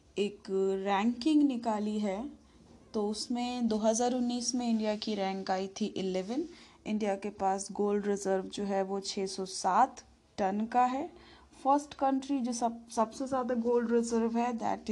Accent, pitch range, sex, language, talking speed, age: native, 210-260 Hz, female, Hindi, 150 wpm, 30-49